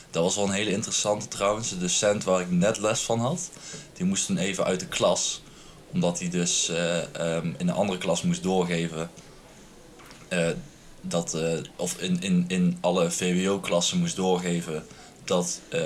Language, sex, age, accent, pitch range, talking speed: Dutch, male, 20-39, Dutch, 85-140 Hz, 175 wpm